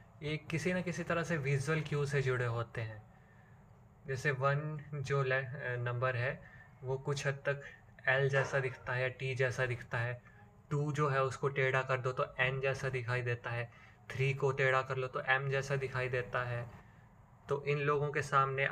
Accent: native